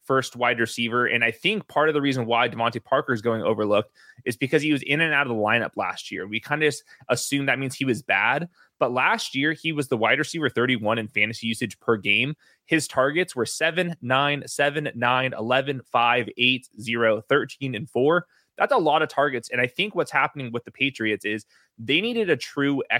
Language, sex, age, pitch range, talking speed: English, male, 20-39, 120-145 Hz, 215 wpm